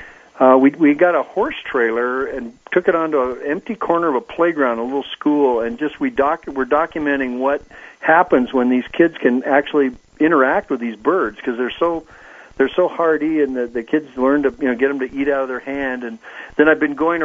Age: 50-69